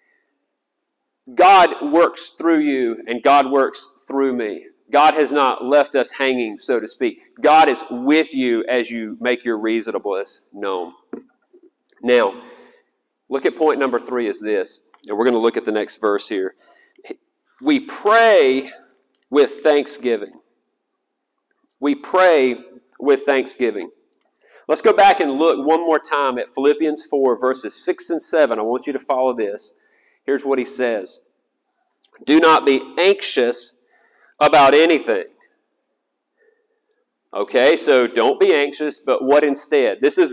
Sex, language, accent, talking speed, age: male, English, American, 140 wpm, 40-59